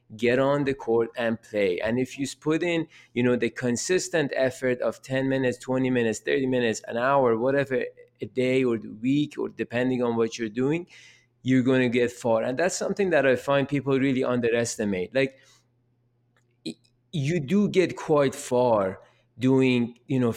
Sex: male